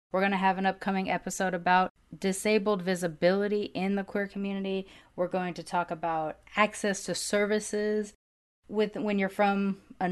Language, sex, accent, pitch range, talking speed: English, female, American, 180-215 Hz, 160 wpm